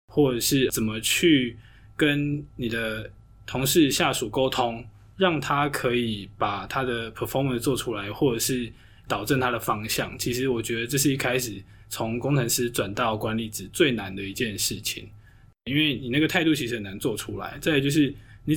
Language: Chinese